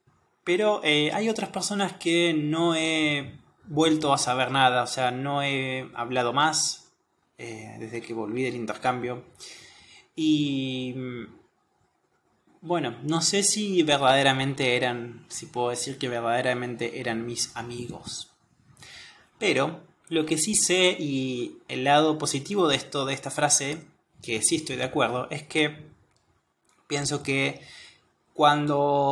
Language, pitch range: Spanish, 125-160 Hz